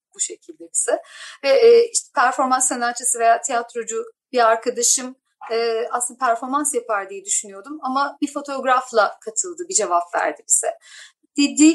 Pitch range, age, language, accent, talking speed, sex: 230-330 Hz, 40-59, Turkish, native, 130 wpm, female